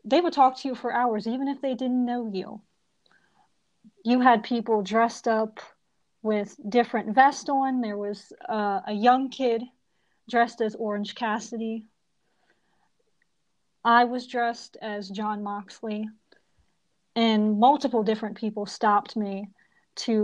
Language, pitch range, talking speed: English, 210-245 Hz, 135 wpm